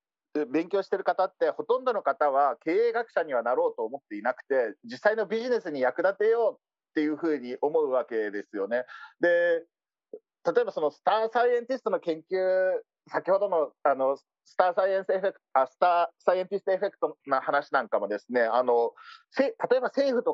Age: 40-59